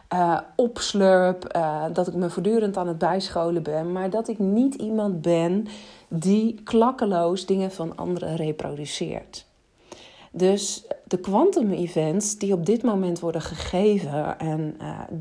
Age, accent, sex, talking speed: 40-59, Dutch, female, 140 wpm